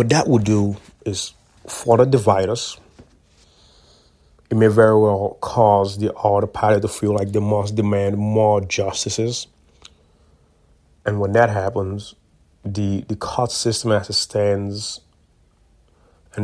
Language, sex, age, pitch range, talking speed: English, male, 30-49, 100-110 Hz, 130 wpm